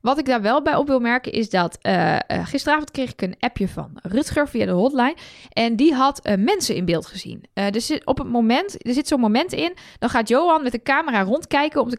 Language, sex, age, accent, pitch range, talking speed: Dutch, female, 10-29, Dutch, 205-275 Hz, 225 wpm